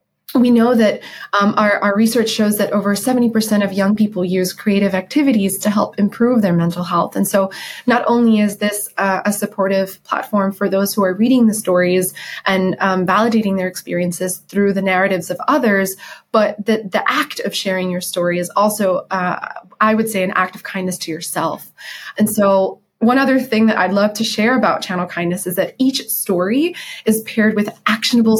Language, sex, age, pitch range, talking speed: English, female, 20-39, 185-225 Hz, 190 wpm